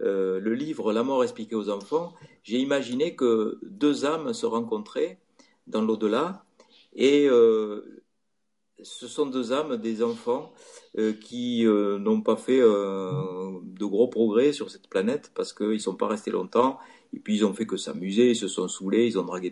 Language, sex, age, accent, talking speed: French, male, 50-69, French, 190 wpm